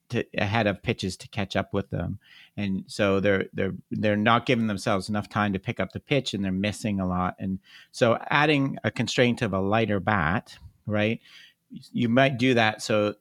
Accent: American